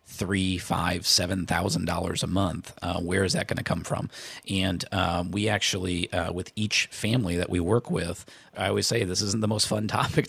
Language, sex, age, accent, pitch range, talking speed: English, male, 40-59, American, 90-105 Hz, 210 wpm